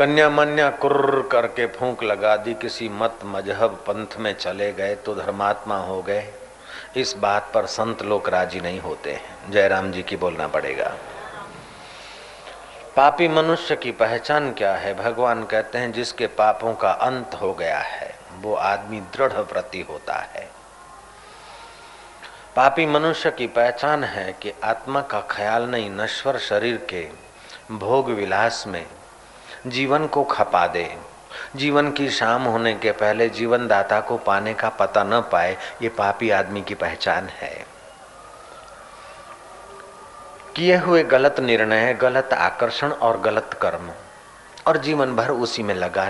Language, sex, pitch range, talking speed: Hindi, male, 105-140 Hz, 140 wpm